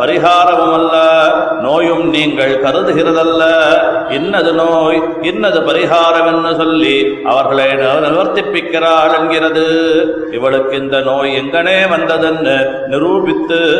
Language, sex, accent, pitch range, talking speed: Tamil, male, native, 150-165 Hz, 85 wpm